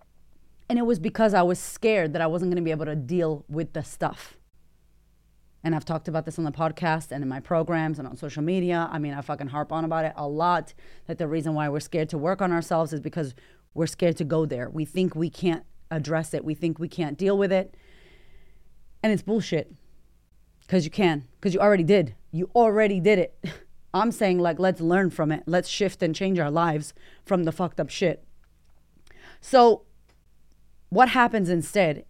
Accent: American